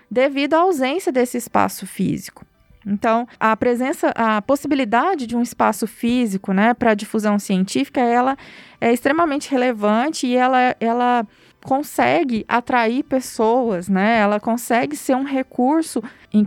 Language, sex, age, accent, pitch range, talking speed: Portuguese, female, 20-39, Brazilian, 225-280 Hz, 130 wpm